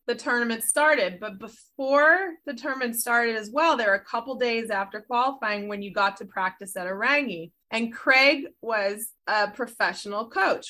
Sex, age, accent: female, 20-39, American